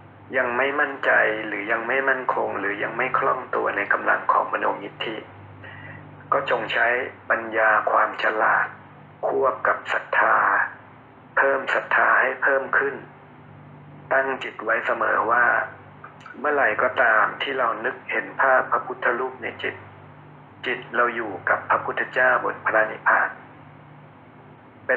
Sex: male